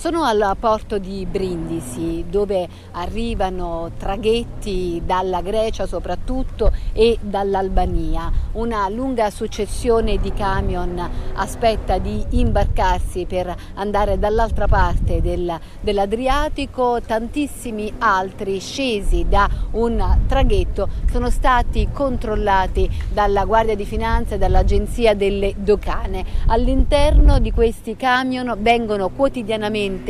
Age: 50-69